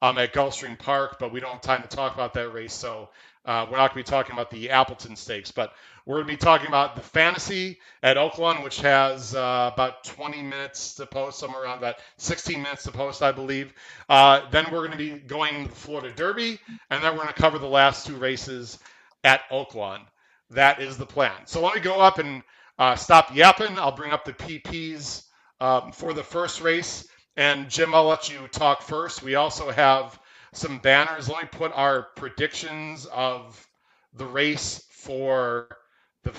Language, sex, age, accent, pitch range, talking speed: English, male, 40-59, American, 125-150 Hz, 205 wpm